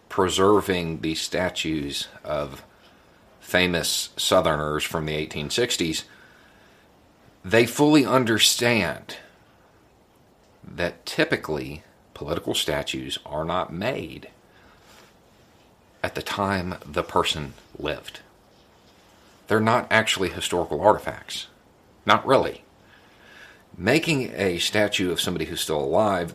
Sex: male